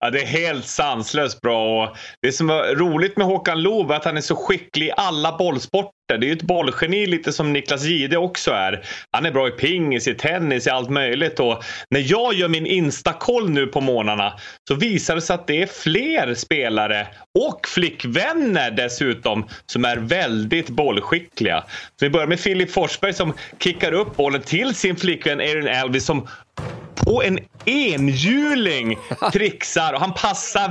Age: 30-49